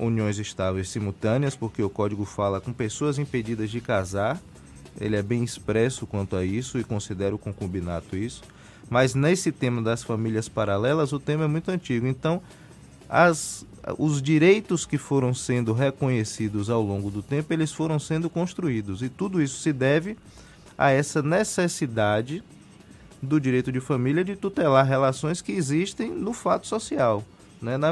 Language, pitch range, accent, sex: Portuguese, 110-160 Hz, Brazilian, male